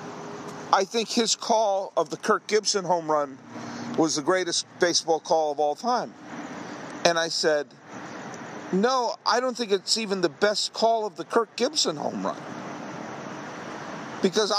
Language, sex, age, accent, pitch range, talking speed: English, male, 50-69, American, 165-220 Hz, 150 wpm